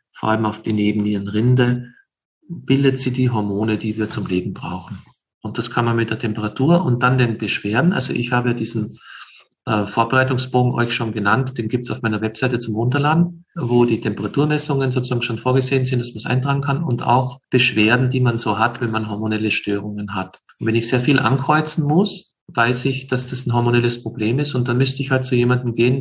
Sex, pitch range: male, 115-130 Hz